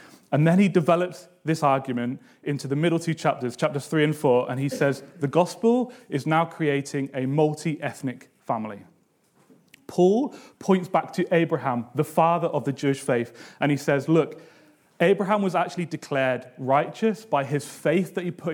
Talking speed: 170 wpm